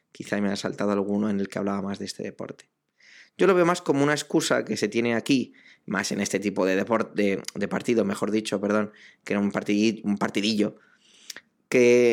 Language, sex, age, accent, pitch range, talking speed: Spanish, male, 20-39, Spanish, 105-135 Hz, 200 wpm